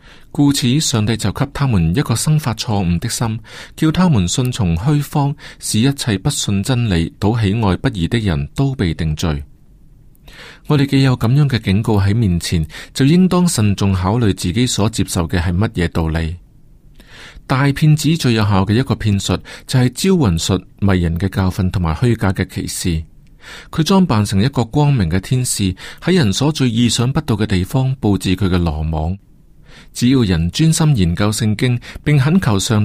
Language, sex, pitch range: Chinese, male, 95-140 Hz